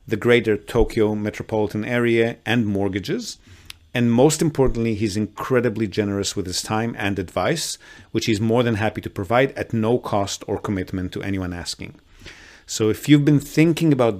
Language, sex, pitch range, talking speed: English, male, 105-135 Hz, 165 wpm